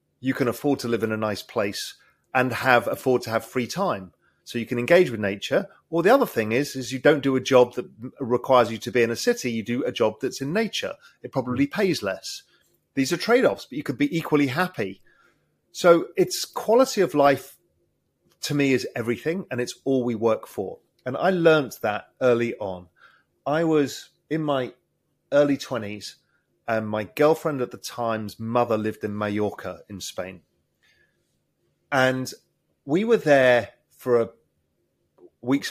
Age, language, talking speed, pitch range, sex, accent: 30-49, English, 180 wpm, 115-145 Hz, male, British